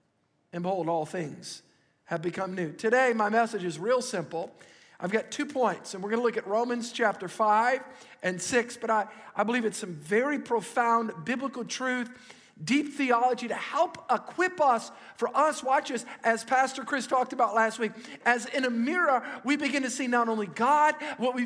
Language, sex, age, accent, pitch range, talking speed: English, male, 50-69, American, 210-265 Hz, 185 wpm